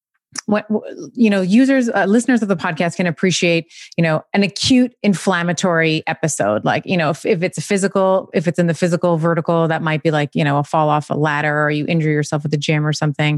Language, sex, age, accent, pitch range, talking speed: English, female, 30-49, American, 160-195 Hz, 230 wpm